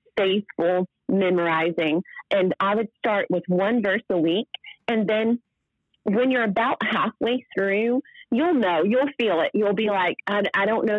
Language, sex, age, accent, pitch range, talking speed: English, female, 30-49, American, 185-235 Hz, 165 wpm